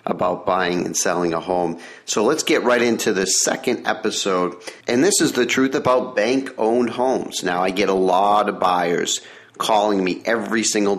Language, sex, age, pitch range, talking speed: English, male, 50-69, 95-125 Hz, 180 wpm